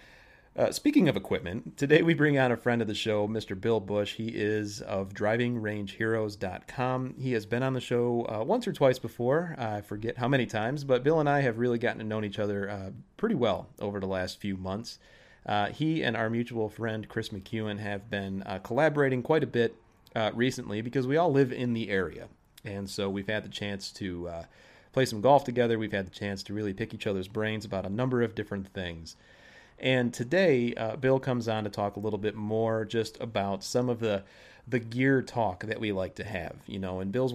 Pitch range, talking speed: 100-125 Hz, 220 wpm